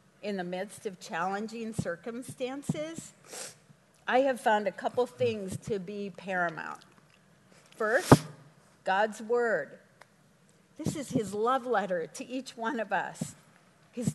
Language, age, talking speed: English, 50-69, 125 wpm